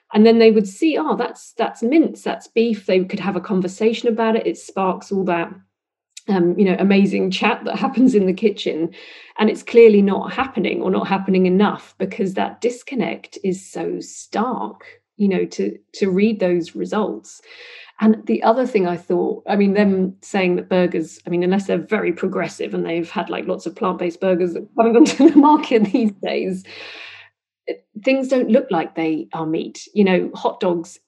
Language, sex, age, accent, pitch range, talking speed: English, female, 40-59, British, 180-225 Hz, 195 wpm